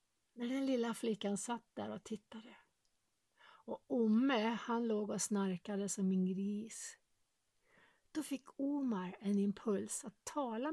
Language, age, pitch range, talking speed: Swedish, 60-79, 185-260 Hz, 135 wpm